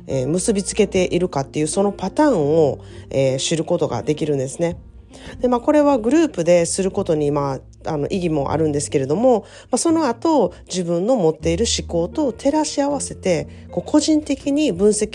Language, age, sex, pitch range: Japanese, 40-59, female, 155-255 Hz